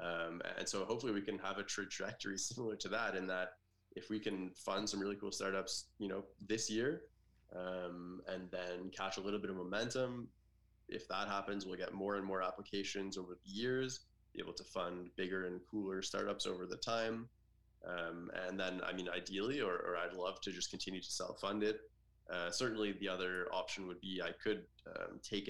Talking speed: 200 wpm